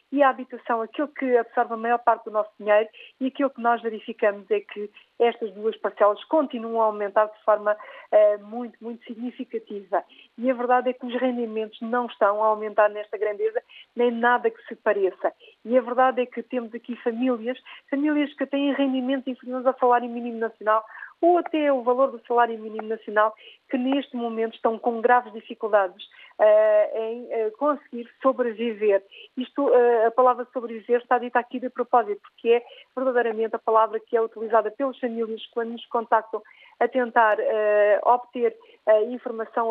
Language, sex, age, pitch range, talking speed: Portuguese, female, 50-69, 220-255 Hz, 165 wpm